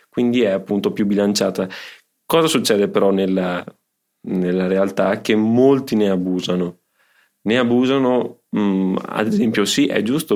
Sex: male